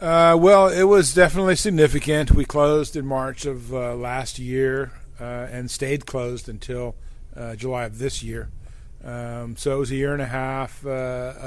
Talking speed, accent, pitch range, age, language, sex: 180 wpm, American, 120-135 Hz, 40-59, English, male